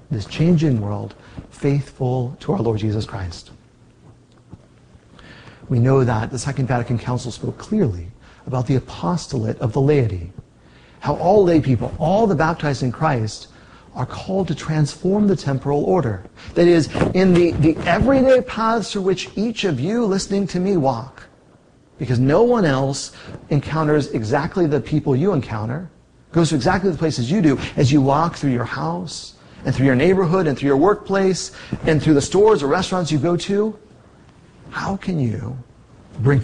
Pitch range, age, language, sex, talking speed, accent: 125-175 Hz, 40-59, English, male, 165 wpm, American